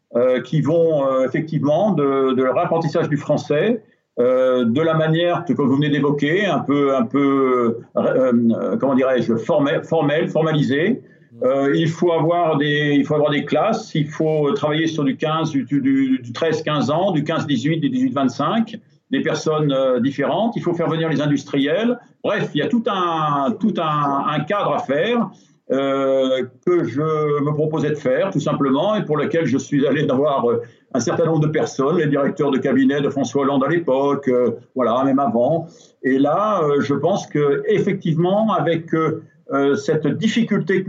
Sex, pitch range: male, 140-170 Hz